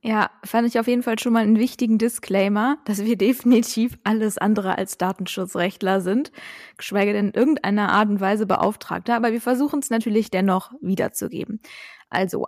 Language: German